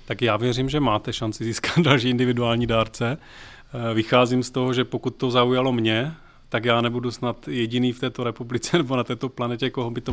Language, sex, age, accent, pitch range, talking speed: Czech, male, 30-49, native, 115-125 Hz, 195 wpm